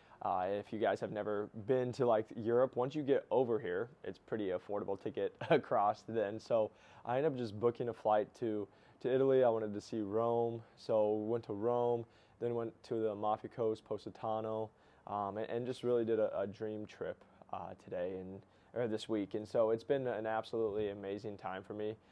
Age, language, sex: 20-39, English, male